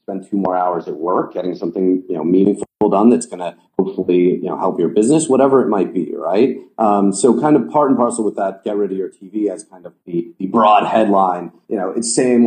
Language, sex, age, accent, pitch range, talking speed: English, male, 30-49, American, 90-110 Hz, 240 wpm